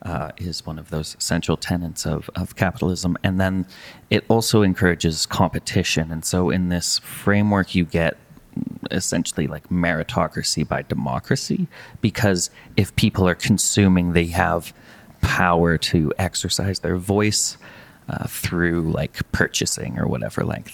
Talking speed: 135 wpm